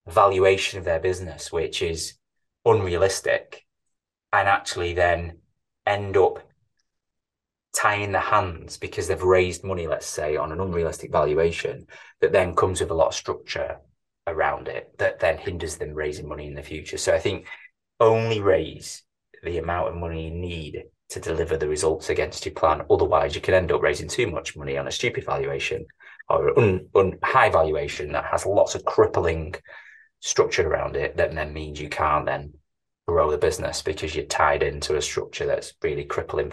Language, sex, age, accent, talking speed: English, male, 20-39, British, 170 wpm